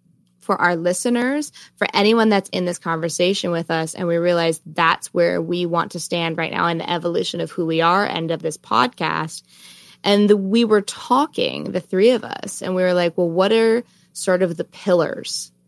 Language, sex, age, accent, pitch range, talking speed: English, female, 20-39, American, 160-180 Hz, 205 wpm